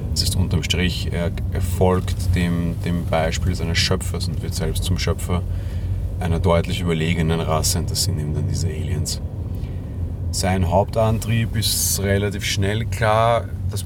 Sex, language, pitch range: male, German, 90-105 Hz